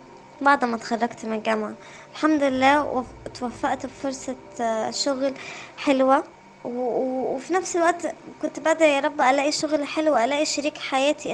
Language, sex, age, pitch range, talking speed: Arabic, male, 20-39, 240-290 Hz, 125 wpm